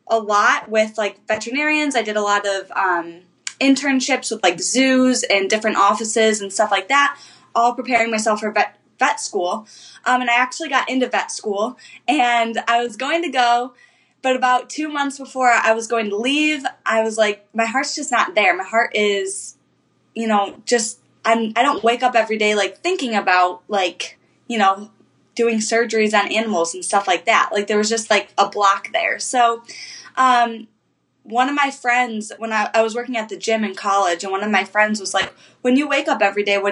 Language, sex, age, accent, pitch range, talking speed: English, female, 10-29, American, 205-255 Hz, 205 wpm